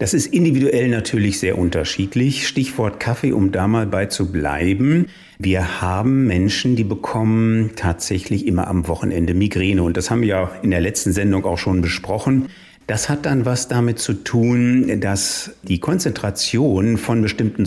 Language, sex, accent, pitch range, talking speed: German, male, German, 95-120 Hz, 165 wpm